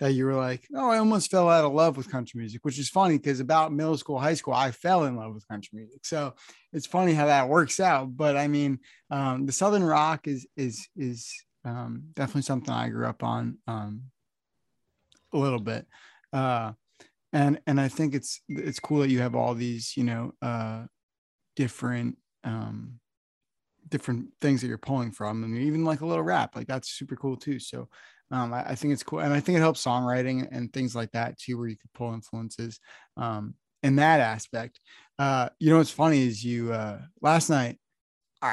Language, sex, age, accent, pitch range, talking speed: English, male, 20-39, American, 120-150 Hz, 205 wpm